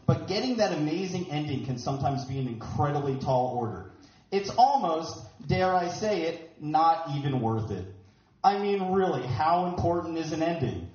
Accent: American